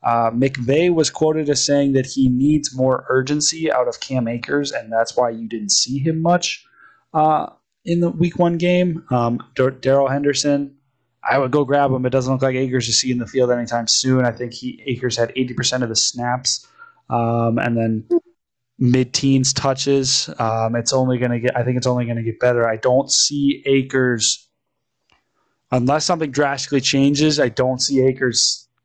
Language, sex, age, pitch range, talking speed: English, male, 20-39, 120-140 Hz, 185 wpm